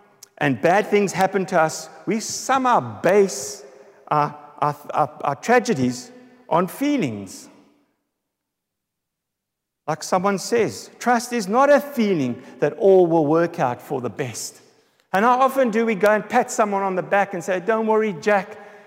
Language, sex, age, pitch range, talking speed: English, male, 50-69, 150-230 Hz, 155 wpm